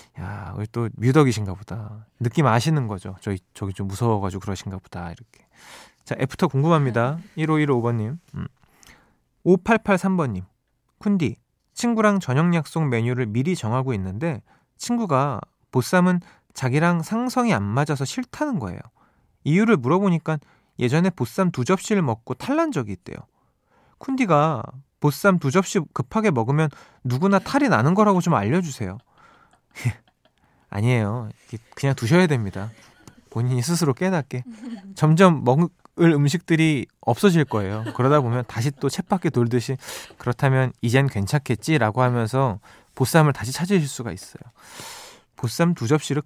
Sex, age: male, 20-39